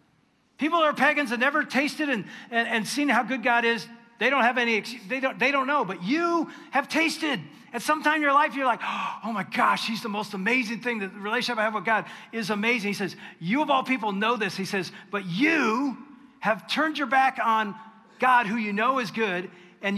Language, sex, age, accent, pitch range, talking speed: English, male, 40-59, American, 200-265 Hz, 230 wpm